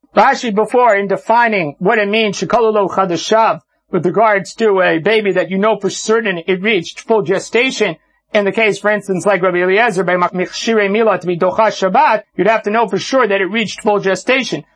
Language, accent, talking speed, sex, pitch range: English, American, 170 wpm, male, 200-235 Hz